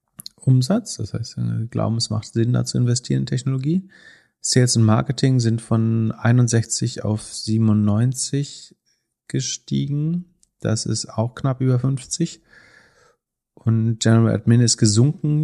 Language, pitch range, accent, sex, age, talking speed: German, 100-115 Hz, German, male, 30-49, 130 wpm